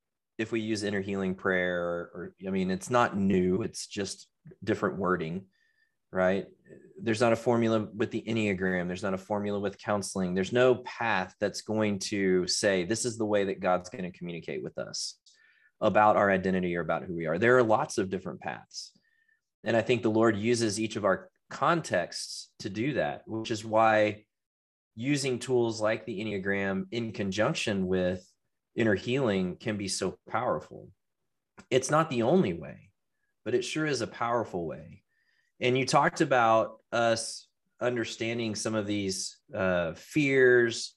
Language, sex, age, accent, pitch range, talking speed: English, male, 20-39, American, 100-130 Hz, 170 wpm